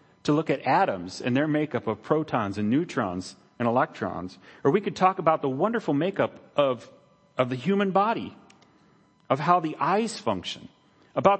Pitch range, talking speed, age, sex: 100-150 Hz, 170 wpm, 40-59, male